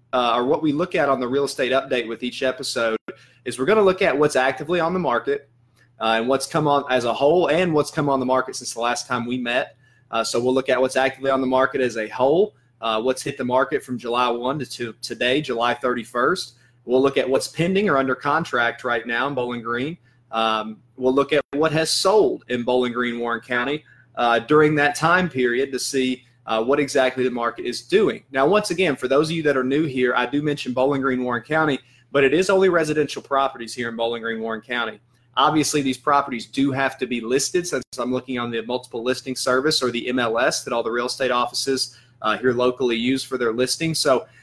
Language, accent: English, American